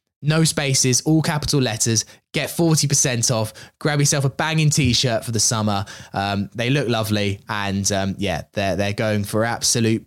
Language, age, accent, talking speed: English, 20-39, British, 165 wpm